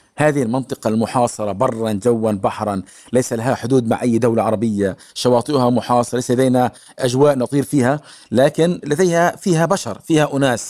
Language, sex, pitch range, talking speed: Arabic, male, 120-150 Hz, 145 wpm